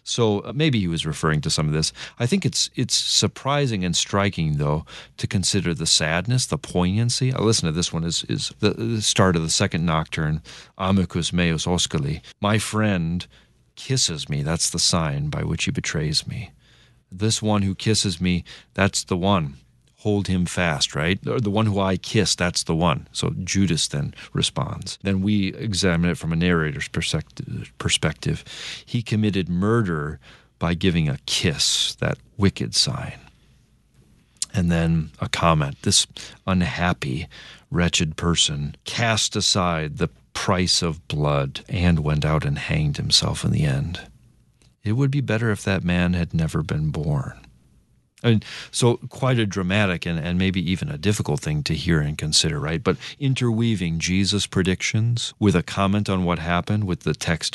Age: 40-59